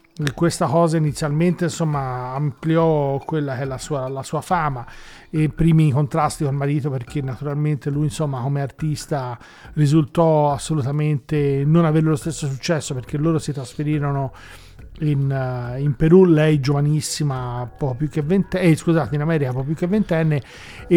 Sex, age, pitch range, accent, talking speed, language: male, 40-59, 145-165 Hz, native, 165 wpm, Italian